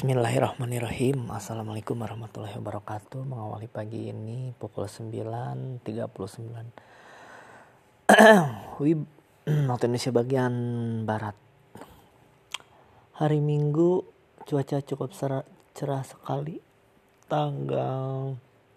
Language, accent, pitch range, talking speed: Indonesian, native, 110-135 Hz, 65 wpm